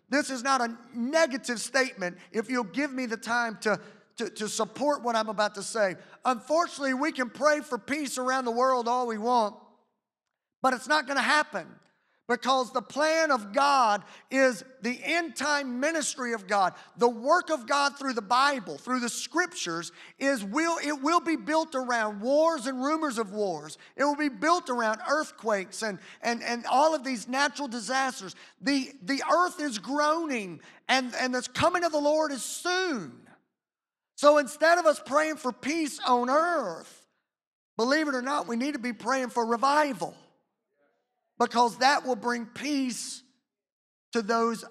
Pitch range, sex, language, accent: 240-295 Hz, male, English, American